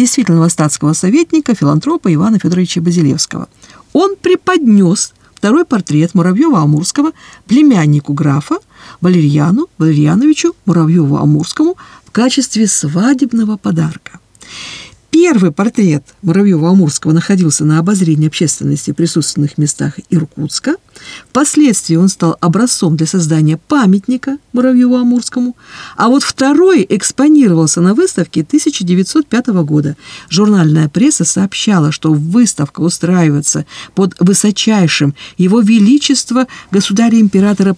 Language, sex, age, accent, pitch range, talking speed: Russian, female, 50-69, native, 160-235 Hz, 95 wpm